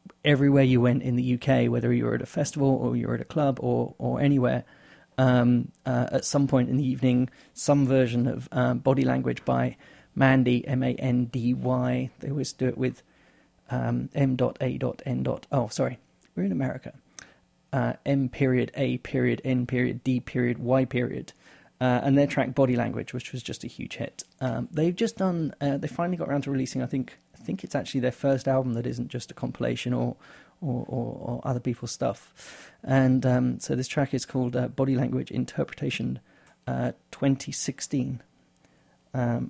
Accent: British